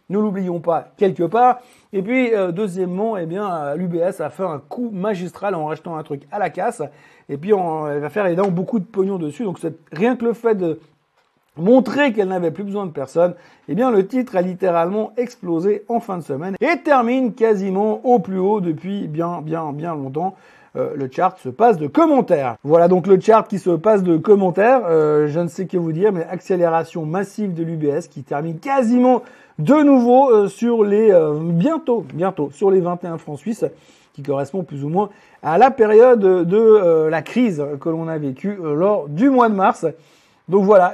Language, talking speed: French, 210 wpm